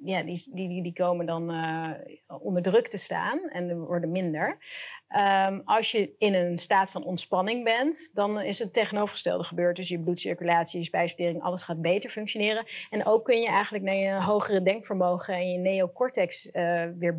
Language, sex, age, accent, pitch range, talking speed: Dutch, female, 30-49, Dutch, 170-195 Hz, 180 wpm